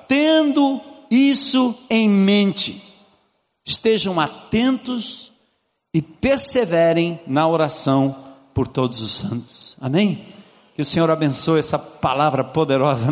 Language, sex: Portuguese, male